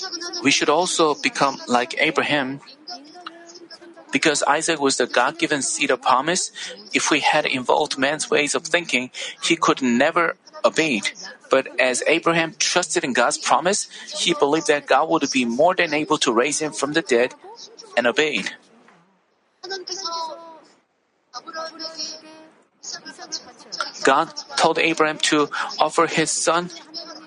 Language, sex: Korean, male